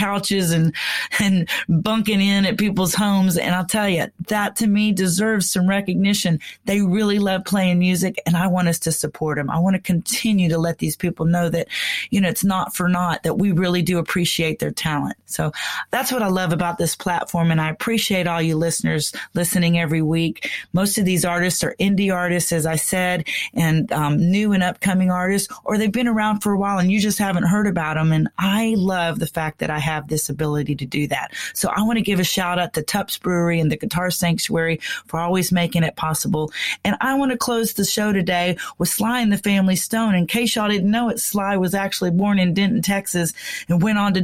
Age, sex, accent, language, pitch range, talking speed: 30-49, female, American, English, 170-205 Hz, 225 wpm